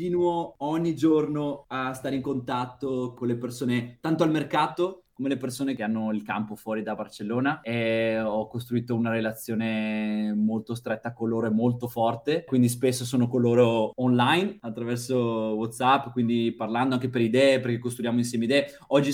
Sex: male